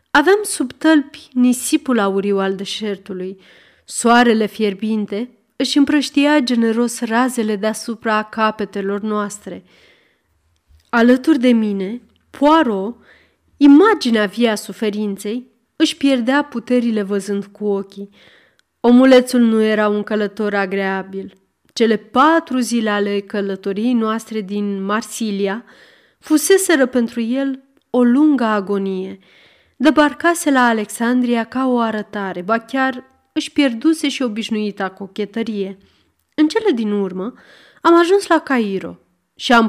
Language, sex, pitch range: Romanian, female, 205-265 Hz